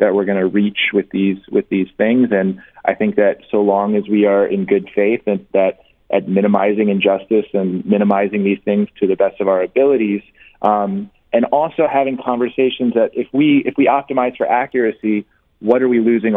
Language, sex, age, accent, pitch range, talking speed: English, male, 30-49, American, 100-125 Hz, 200 wpm